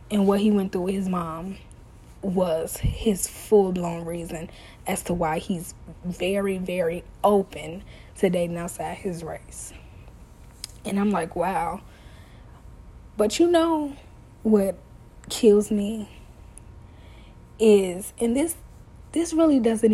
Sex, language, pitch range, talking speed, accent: female, English, 180-220 Hz, 120 wpm, American